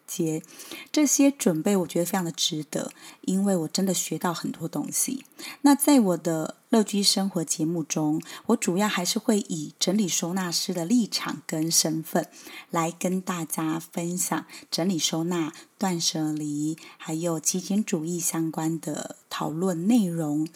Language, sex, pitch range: Chinese, female, 165-230 Hz